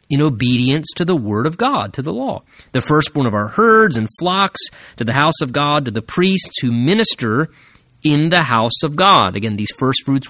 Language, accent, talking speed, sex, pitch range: English, American, 210 wpm, male, 120-160 Hz